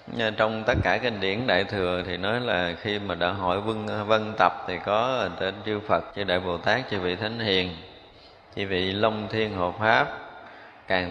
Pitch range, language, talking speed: 95-110 Hz, Vietnamese, 205 wpm